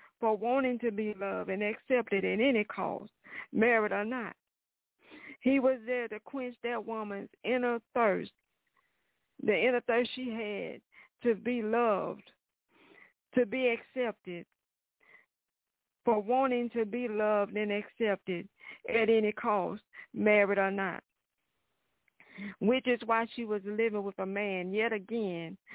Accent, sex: American, female